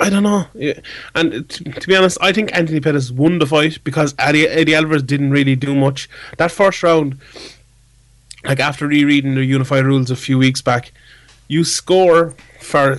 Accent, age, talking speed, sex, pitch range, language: Irish, 30-49, 170 wpm, male, 130-145 Hz, English